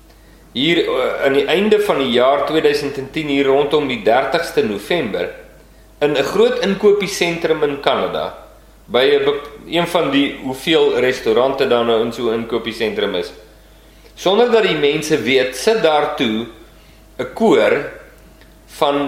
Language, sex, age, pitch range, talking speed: English, male, 40-59, 130-215 Hz, 130 wpm